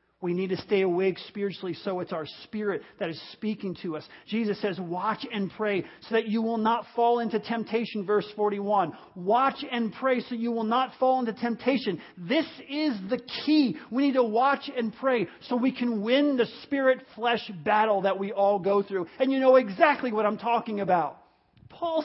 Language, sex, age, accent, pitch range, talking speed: English, male, 40-59, American, 210-270 Hz, 195 wpm